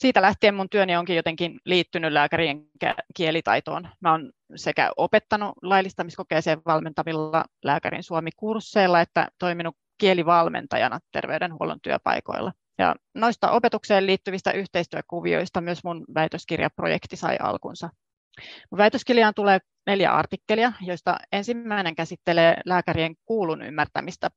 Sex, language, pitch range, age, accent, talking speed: female, Finnish, 170-200 Hz, 30-49, native, 105 wpm